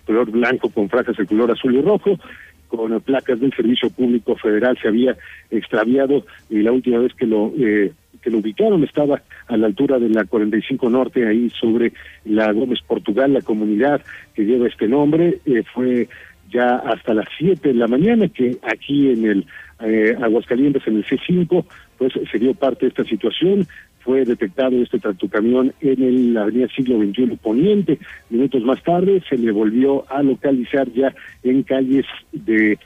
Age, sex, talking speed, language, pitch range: 50-69, male, 170 wpm, Spanish, 115-135 Hz